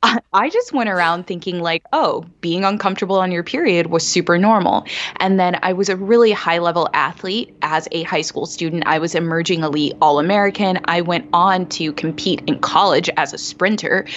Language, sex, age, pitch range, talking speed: English, female, 20-39, 160-195 Hz, 185 wpm